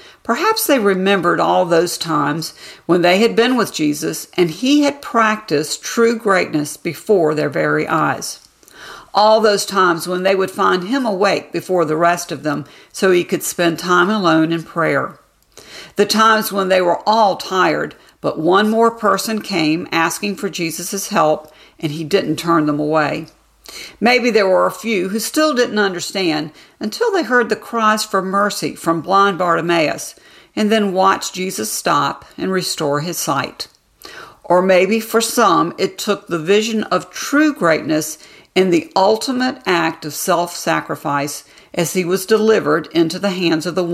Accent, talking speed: American, 165 wpm